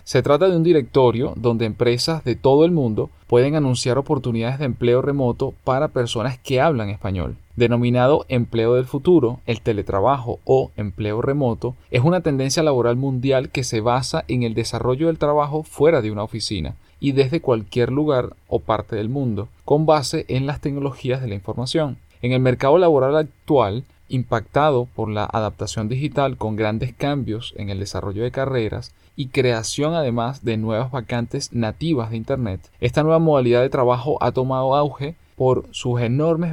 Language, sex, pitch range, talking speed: Spanish, male, 115-140 Hz, 170 wpm